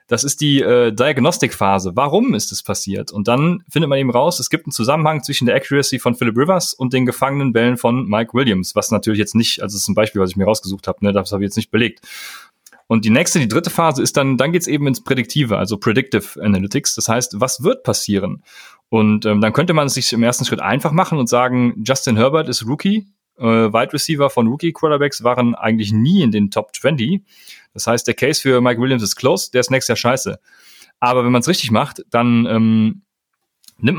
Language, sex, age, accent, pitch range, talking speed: German, male, 30-49, German, 110-140 Hz, 230 wpm